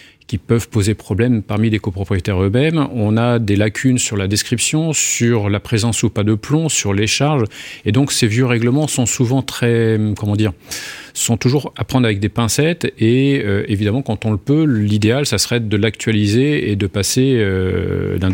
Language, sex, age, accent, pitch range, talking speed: French, male, 40-59, French, 100-125 Hz, 195 wpm